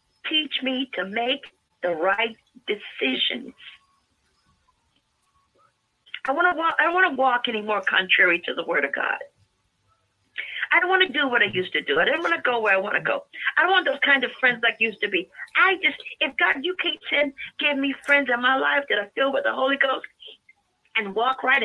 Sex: female